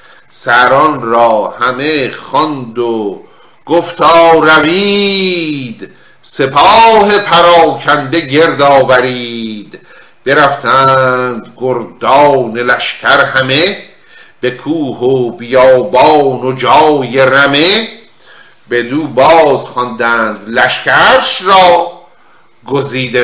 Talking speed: 70 wpm